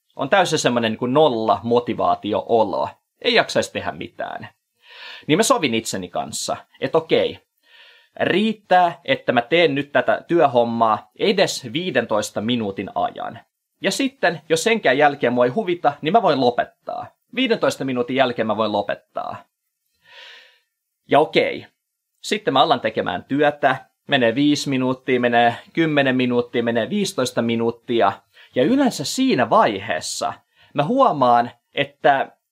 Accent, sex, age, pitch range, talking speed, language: native, male, 20-39, 120-185 Hz, 120 wpm, Finnish